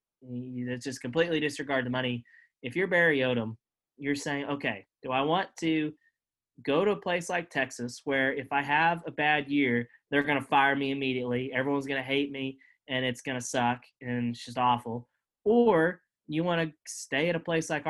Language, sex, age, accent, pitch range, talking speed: English, male, 20-39, American, 130-165 Hz, 200 wpm